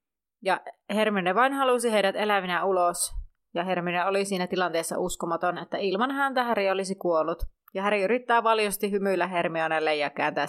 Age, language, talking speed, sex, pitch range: 30-49, Finnish, 155 wpm, female, 175-225 Hz